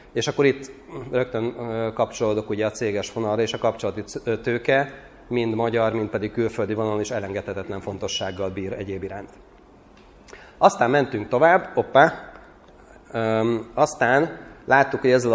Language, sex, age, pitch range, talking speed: Hungarian, male, 30-49, 105-120 Hz, 125 wpm